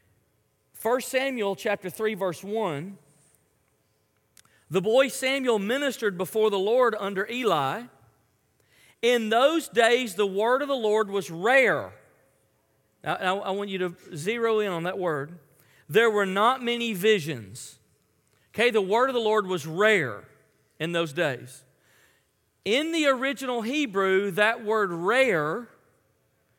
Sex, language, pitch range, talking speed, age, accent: male, English, 135-220 Hz, 130 wpm, 40-59, American